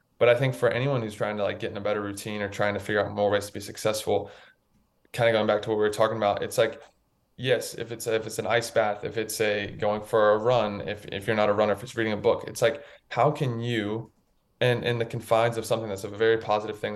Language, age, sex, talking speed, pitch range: English, 20-39, male, 280 wpm, 105-115 Hz